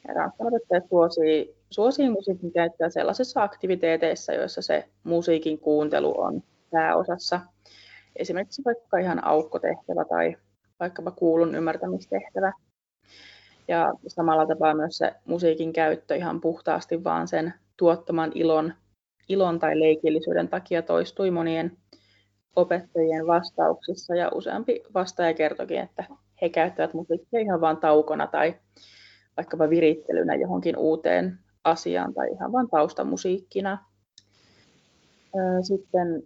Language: Finnish